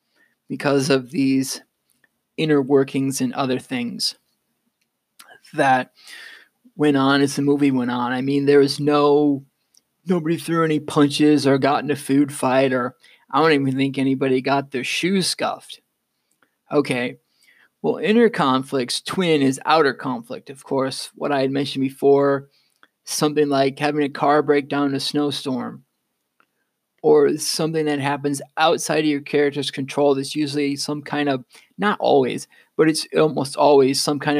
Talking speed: 155 wpm